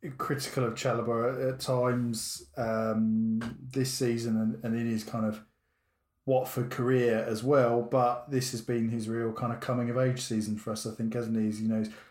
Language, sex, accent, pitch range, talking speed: English, male, British, 115-130 Hz, 200 wpm